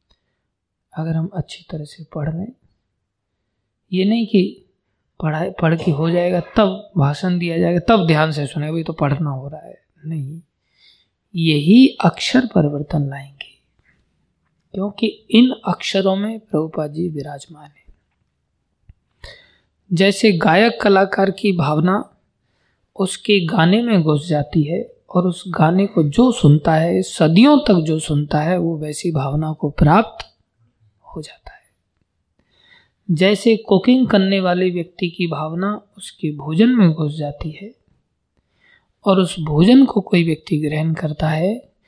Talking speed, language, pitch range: 135 wpm, Hindi, 150-195 Hz